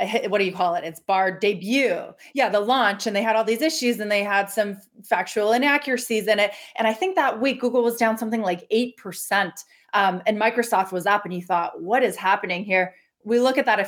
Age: 20-39